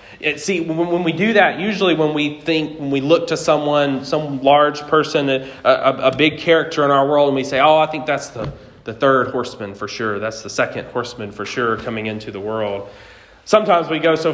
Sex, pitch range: male, 125-170 Hz